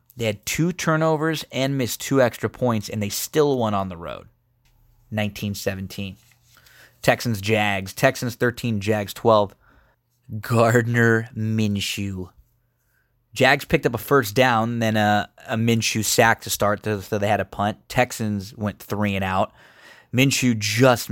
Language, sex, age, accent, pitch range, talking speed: English, male, 20-39, American, 105-120 Hz, 140 wpm